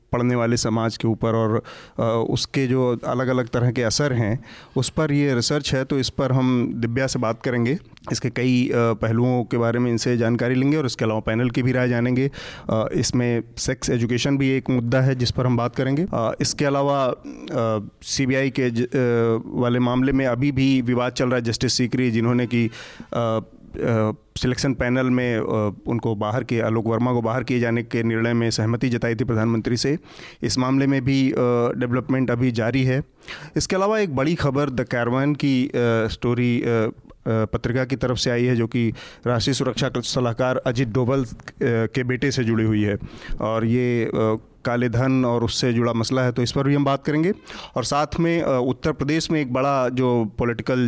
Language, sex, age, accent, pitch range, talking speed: Hindi, male, 30-49, native, 115-135 Hz, 190 wpm